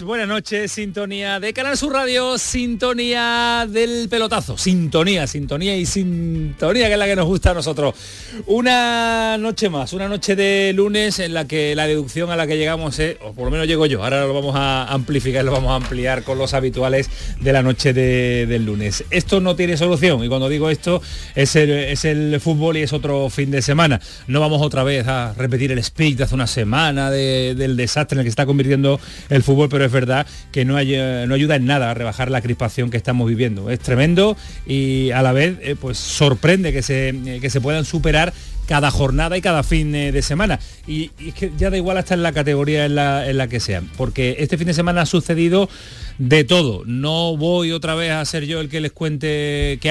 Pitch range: 130-175 Hz